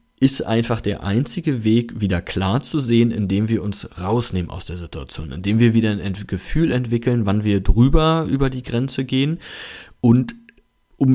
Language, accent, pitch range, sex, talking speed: German, German, 95-115 Hz, male, 165 wpm